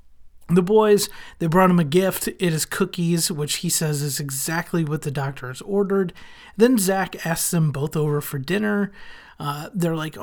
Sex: male